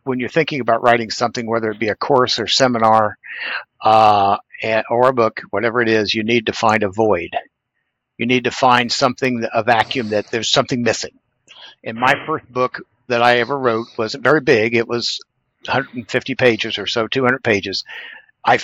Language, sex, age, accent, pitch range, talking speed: English, male, 60-79, American, 110-130 Hz, 185 wpm